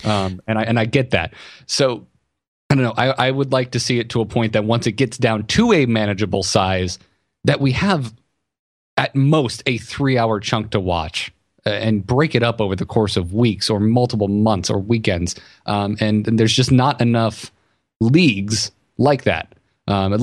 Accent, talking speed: American, 200 wpm